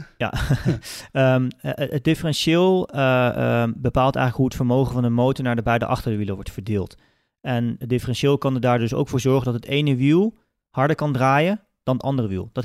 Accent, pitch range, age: Dutch, 120-150 Hz, 40-59